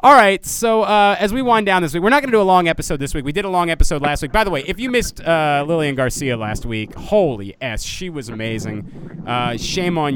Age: 30-49